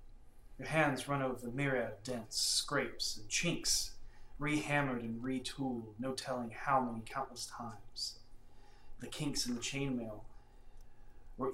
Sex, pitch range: male, 115-135 Hz